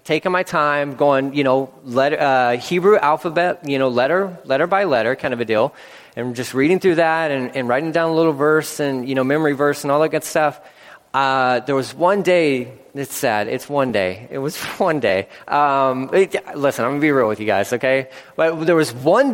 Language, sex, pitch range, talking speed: English, male, 135-190 Hz, 220 wpm